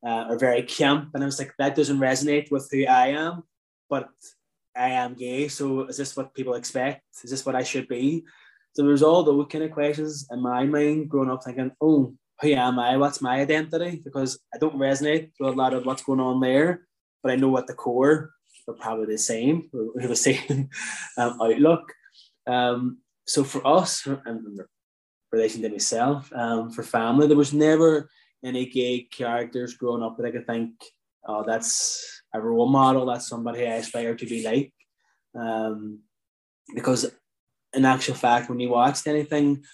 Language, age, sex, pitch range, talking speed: English, 20-39, male, 120-145 Hz, 185 wpm